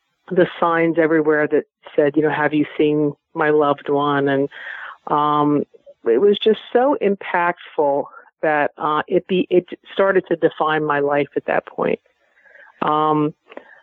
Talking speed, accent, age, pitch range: 150 wpm, American, 50-69, 150-175 Hz